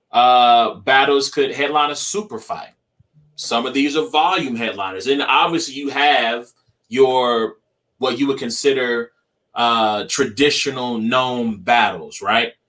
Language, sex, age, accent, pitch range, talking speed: English, male, 20-39, American, 115-145 Hz, 130 wpm